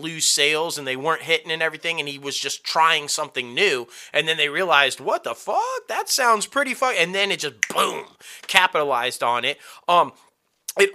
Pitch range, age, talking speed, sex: 145-205 Hz, 30-49, 195 wpm, male